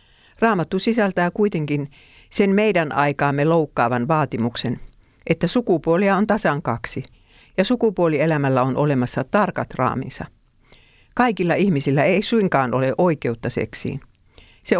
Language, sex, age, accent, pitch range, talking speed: Finnish, female, 50-69, native, 125-180 Hz, 110 wpm